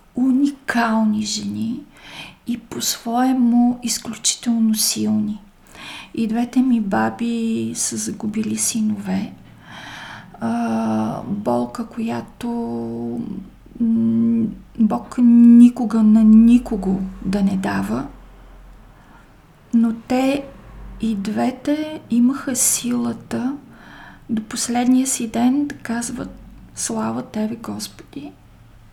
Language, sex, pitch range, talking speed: Bulgarian, female, 210-245 Hz, 75 wpm